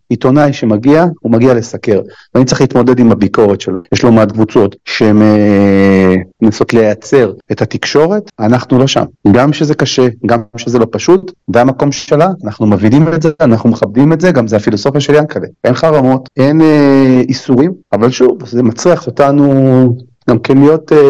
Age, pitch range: 30-49, 110-145 Hz